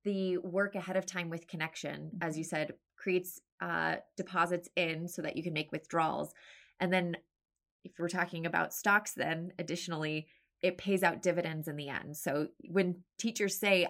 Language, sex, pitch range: English, female, 165-190 Hz